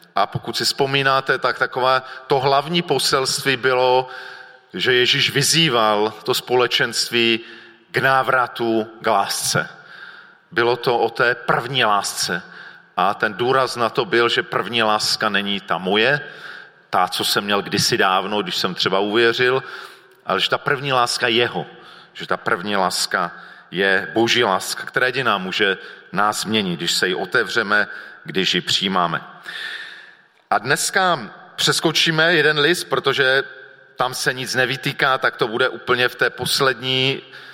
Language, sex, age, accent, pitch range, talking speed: Czech, male, 40-59, native, 115-140 Hz, 140 wpm